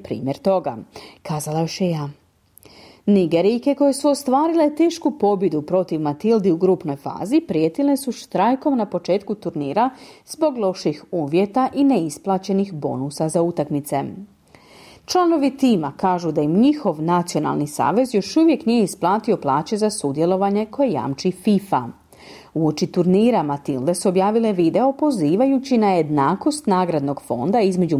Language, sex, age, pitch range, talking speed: Croatian, female, 40-59, 165-245 Hz, 130 wpm